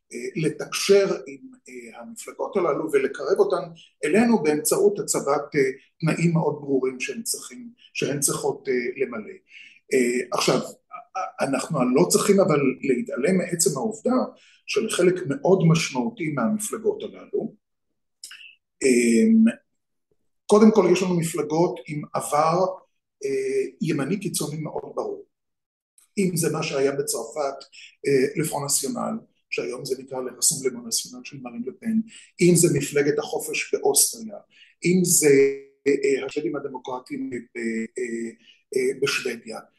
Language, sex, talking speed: Hebrew, male, 95 wpm